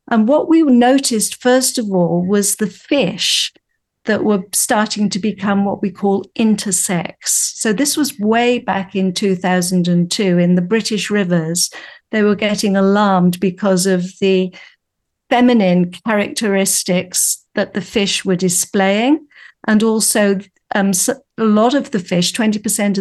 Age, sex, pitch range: 50-69, female, 185-245 Hz